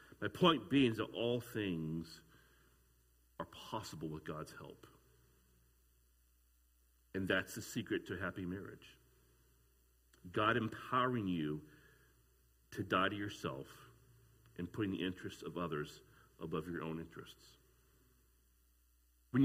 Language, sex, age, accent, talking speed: English, male, 40-59, American, 115 wpm